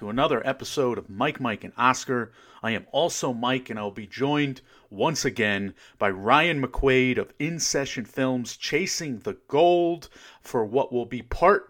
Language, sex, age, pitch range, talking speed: English, male, 40-59, 125-145 Hz, 170 wpm